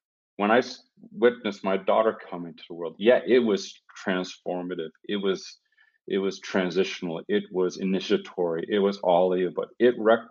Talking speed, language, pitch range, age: 165 wpm, English, 85-100 Hz, 40-59